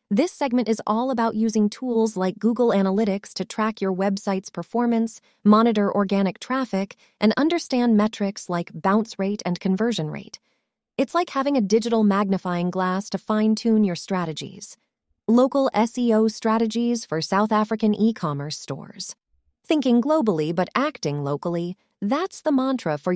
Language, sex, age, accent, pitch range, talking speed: English, female, 30-49, American, 190-240 Hz, 140 wpm